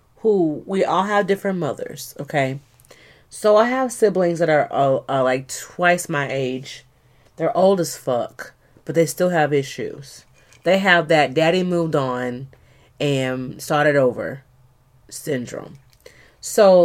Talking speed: 140 wpm